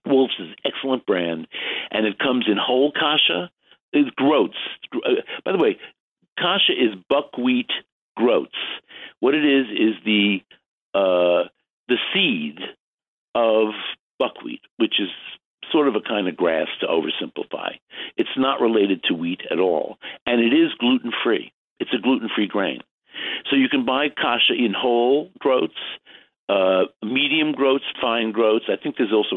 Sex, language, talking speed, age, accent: male, English, 145 wpm, 60-79, American